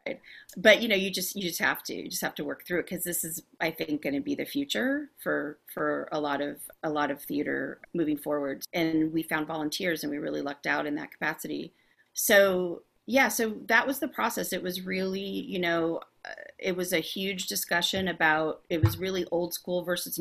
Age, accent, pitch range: 30-49, American, 155-190 Hz